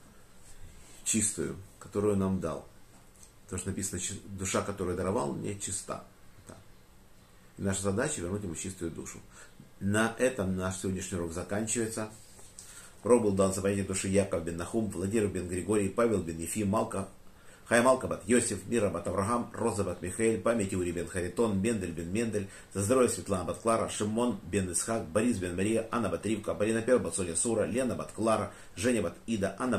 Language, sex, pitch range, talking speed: Russian, male, 95-110 Hz, 155 wpm